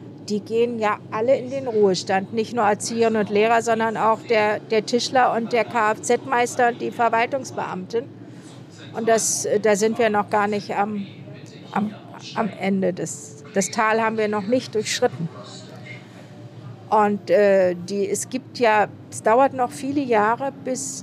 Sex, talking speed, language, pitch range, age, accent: female, 145 wpm, German, 175-235 Hz, 50-69, German